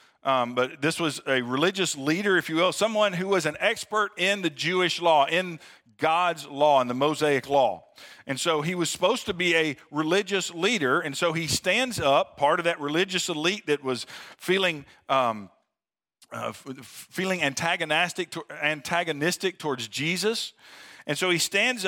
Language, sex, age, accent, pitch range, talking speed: English, male, 50-69, American, 155-210 Hz, 170 wpm